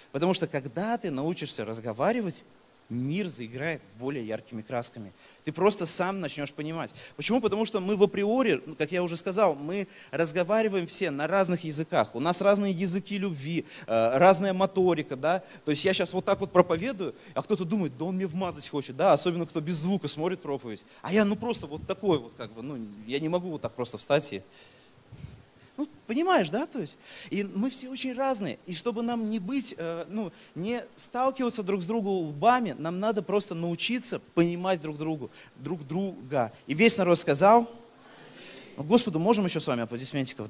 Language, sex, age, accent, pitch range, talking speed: Russian, male, 30-49, native, 150-205 Hz, 185 wpm